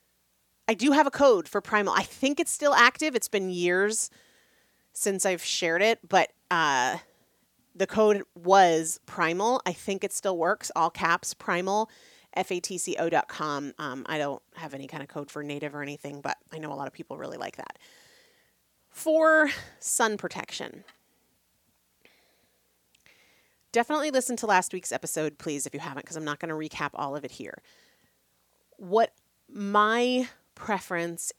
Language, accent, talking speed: English, American, 160 wpm